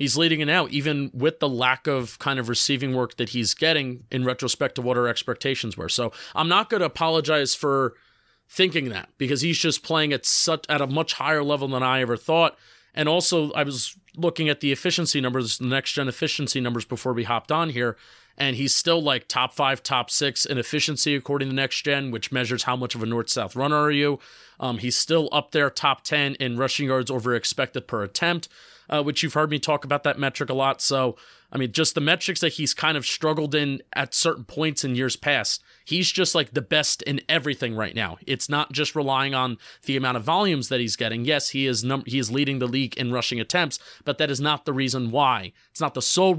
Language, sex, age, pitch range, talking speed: English, male, 30-49, 125-155 Hz, 230 wpm